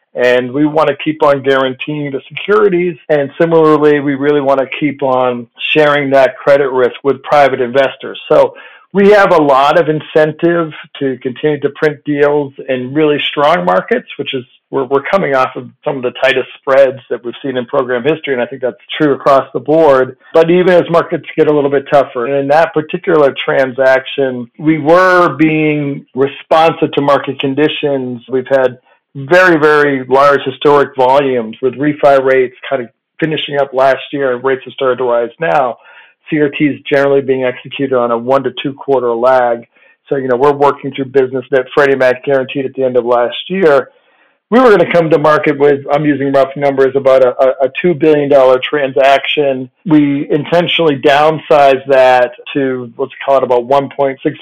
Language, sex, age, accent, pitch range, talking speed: English, male, 50-69, American, 130-150 Hz, 185 wpm